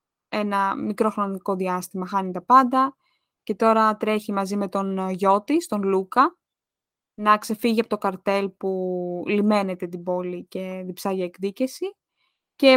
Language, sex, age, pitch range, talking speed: Greek, female, 20-39, 190-225 Hz, 140 wpm